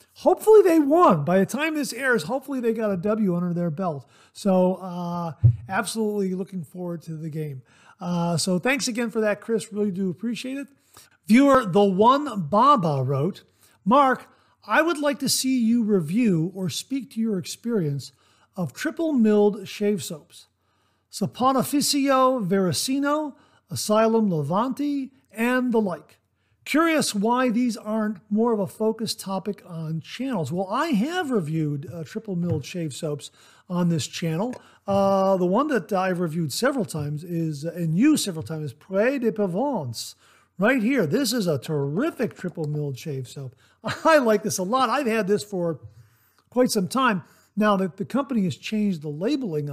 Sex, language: male, English